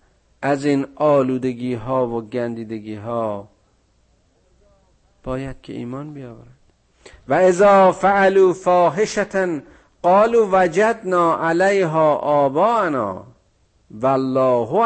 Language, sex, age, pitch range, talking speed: Persian, male, 50-69, 100-135 Hz, 80 wpm